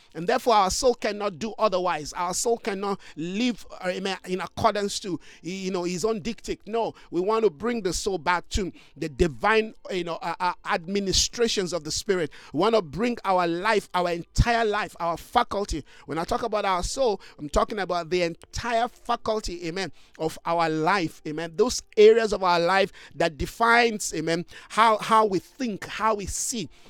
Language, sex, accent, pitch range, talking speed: English, male, Nigerian, 175-230 Hz, 180 wpm